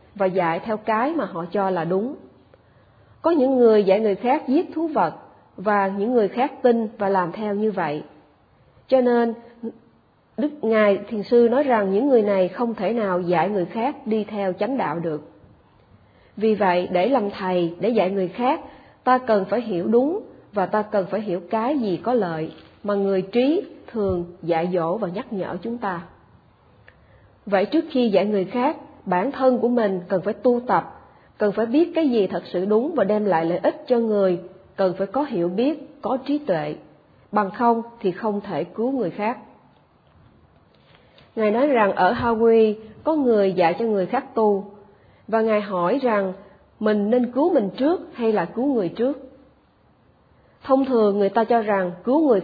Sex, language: female, Vietnamese